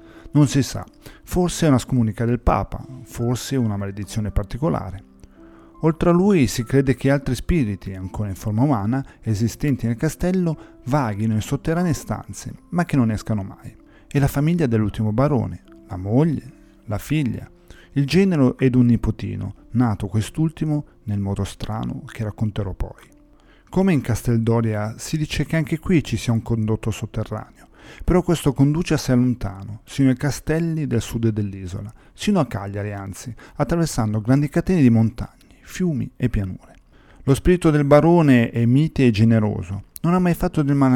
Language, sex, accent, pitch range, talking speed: Italian, male, native, 105-140 Hz, 165 wpm